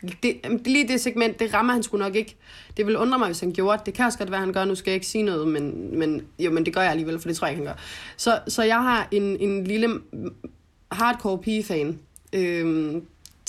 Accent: native